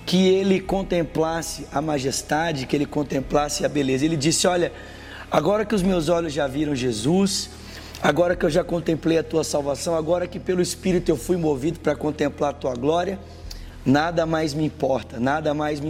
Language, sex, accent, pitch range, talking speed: Portuguese, male, Brazilian, 140-170 Hz, 180 wpm